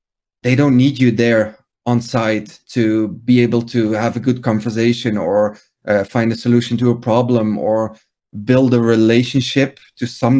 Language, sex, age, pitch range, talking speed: English, male, 30-49, 110-125 Hz, 165 wpm